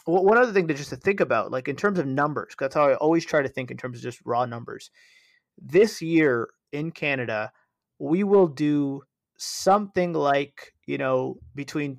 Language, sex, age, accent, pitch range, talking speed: English, male, 30-49, American, 125-155 Hz, 190 wpm